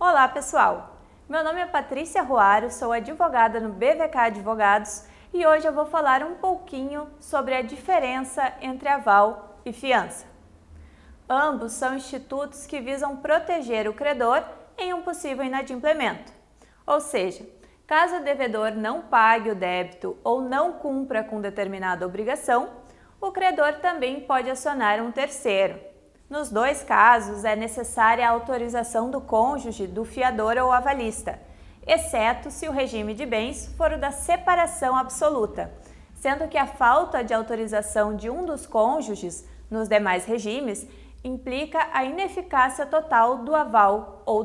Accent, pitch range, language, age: Brazilian, 225-295 Hz, Portuguese, 20-39